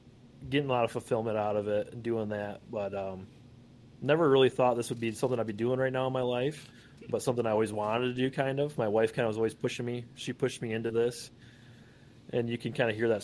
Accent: American